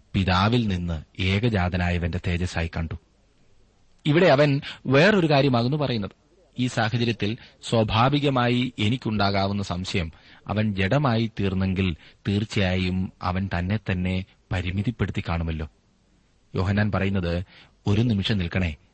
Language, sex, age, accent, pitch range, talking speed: Malayalam, male, 30-49, native, 95-130 Hz, 90 wpm